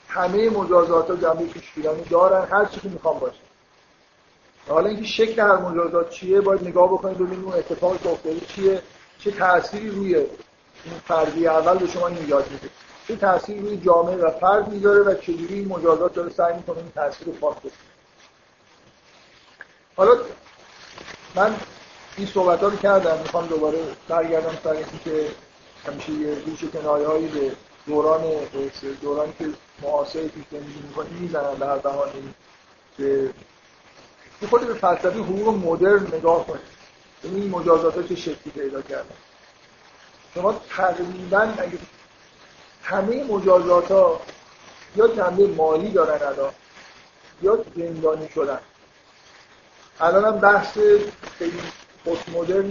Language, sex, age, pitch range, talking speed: Persian, male, 50-69, 160-195 Hz, 115 wpm